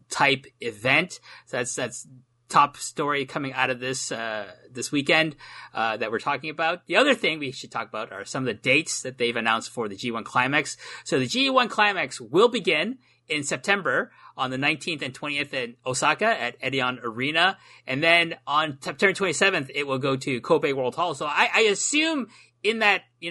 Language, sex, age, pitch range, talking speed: English, male, 30-49, 130-170 Hz, 195 wpm